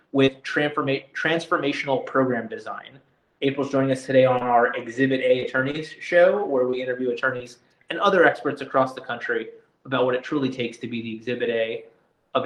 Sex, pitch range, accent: male, 135-170 Hz, American